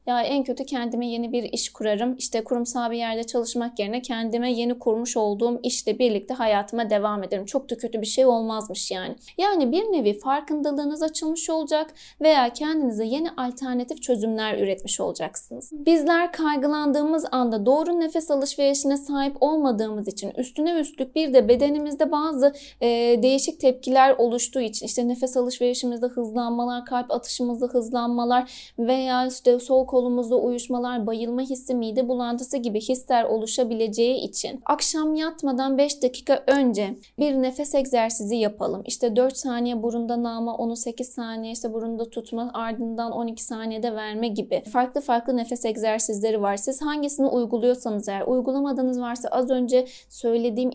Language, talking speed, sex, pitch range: Turkish, 145 wpm, female, 230-275 Hz